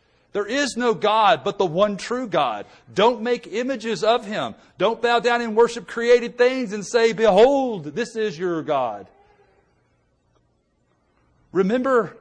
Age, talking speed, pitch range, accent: 40-59, 145 wpm, 135-215 Hz, American